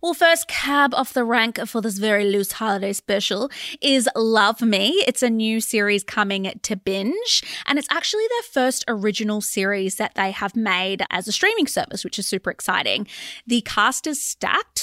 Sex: female